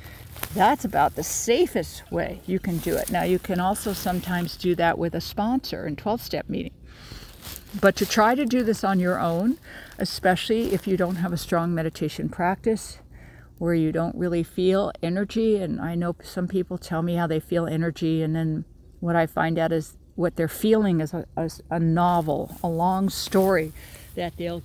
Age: 60-79